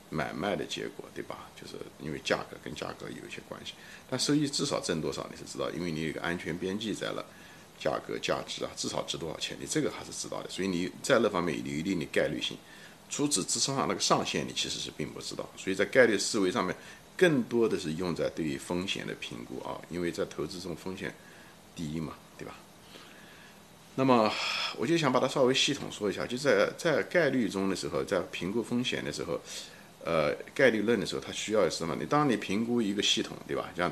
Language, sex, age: Chinese, male, 50-69